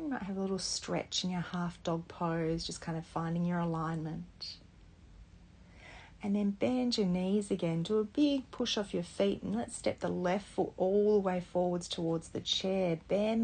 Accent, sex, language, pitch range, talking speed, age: Australian, female, English, 160-195 Hz, 195 wpm, 40-59